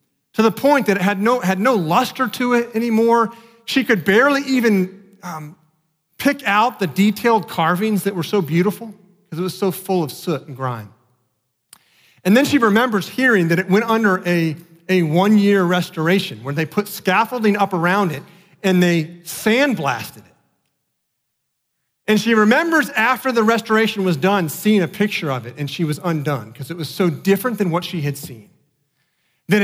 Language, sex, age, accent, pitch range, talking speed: English, male, 40-59, American, 170-225 Hz, 175 wpm